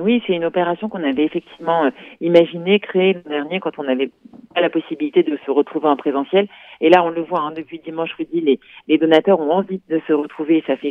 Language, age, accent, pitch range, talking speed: Italian, 40-59, French, 165-210 Hz, 230 wpm